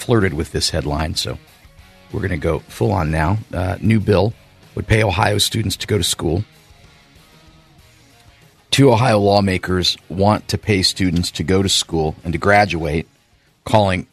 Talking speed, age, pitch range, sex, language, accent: 160 wpm, 50-69, 85-110 Hz, male, English, American